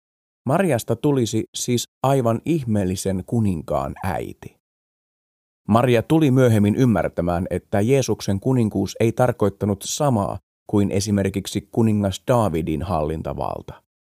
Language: Finnish